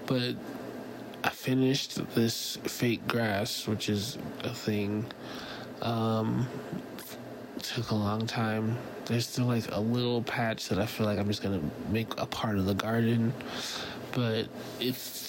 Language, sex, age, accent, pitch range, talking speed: English, male, 20-39, American, 110-125 Hz, 145 wpm